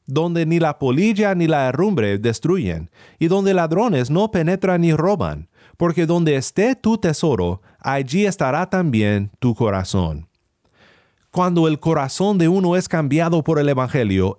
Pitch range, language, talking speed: 125-180 Hz, Spanish, 145 wpm